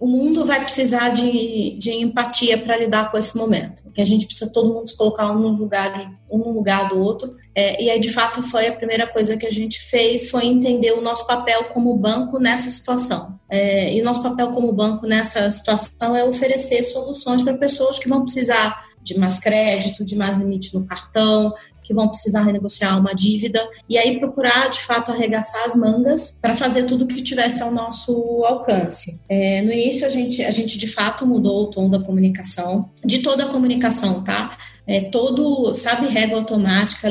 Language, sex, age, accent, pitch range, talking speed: Portuguese, female, 30-49, Brazilian, 210-245 Hz, 185 wpm